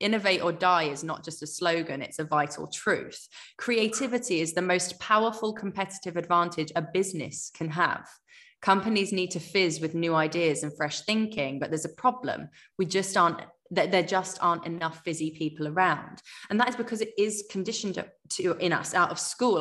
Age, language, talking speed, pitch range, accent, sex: 20-39, English, 190 wpm, 165-225 Hz, British, female